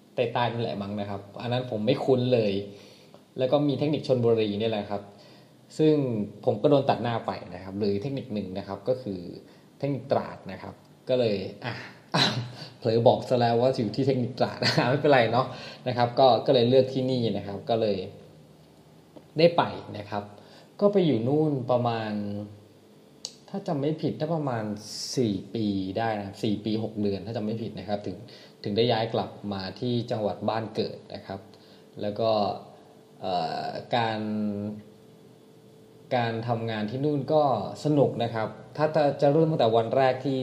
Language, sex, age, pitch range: Thai, male, 20-39, 105-125 Hz